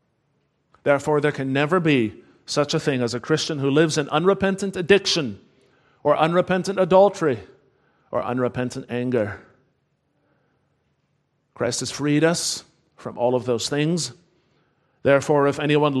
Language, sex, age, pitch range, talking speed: English, male, 40-59, 140-165 Hz, 130 wpm